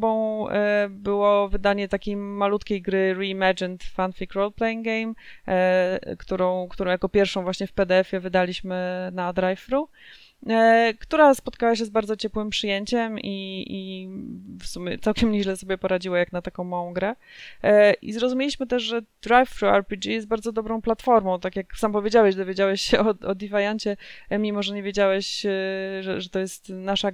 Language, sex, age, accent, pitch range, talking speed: Polish, female, 20-39, native, 190-210 Hz, 155 wpm